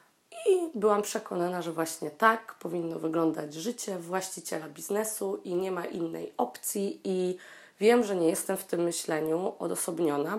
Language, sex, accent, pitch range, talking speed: Polish, female, native, 160-195 Hz, 145 wpm